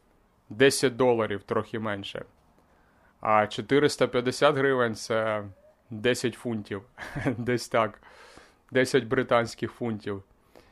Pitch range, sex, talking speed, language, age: 100-135 Hz, male, 90 wpm, Ukrainian, 30-49